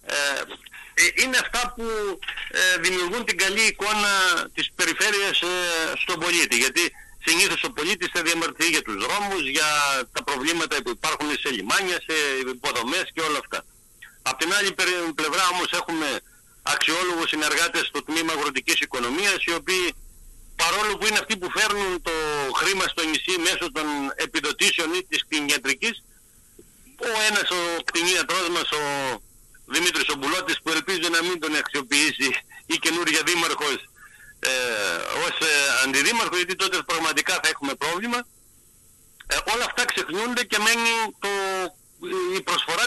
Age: 60-79